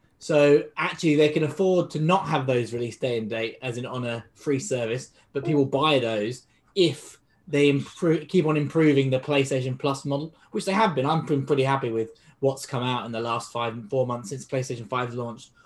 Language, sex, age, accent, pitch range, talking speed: English, male, 20-39, British, 125-150 Hz, 205 wpm